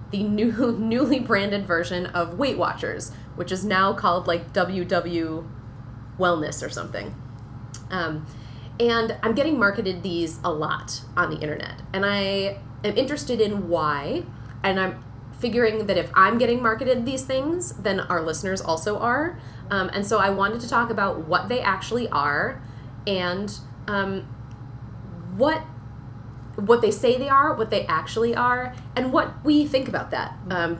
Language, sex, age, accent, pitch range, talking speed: English, female, 20-39, American, 135-220 Hz, 155 wpm